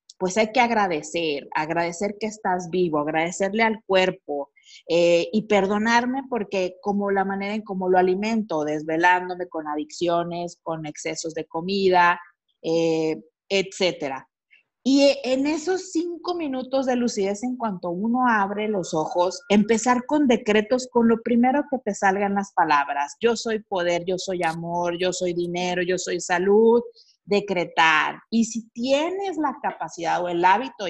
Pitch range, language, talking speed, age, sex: 170-225 Hz, Spanish, 150 wpm, 30-49, female